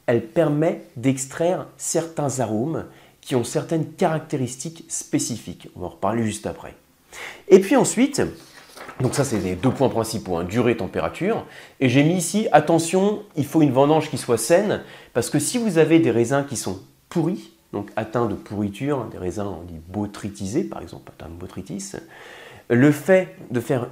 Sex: male